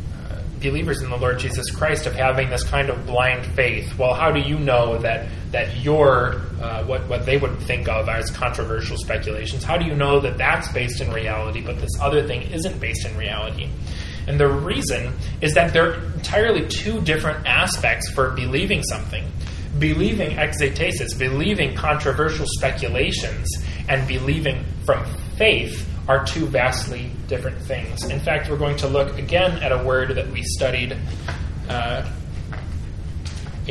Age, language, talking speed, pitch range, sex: 20-39, English, 160 wpm, 80-120 Hz, male